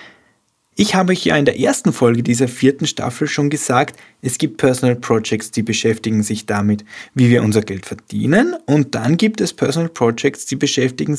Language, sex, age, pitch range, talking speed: German, male, 20-39, 115-155 Hz, 180 wpm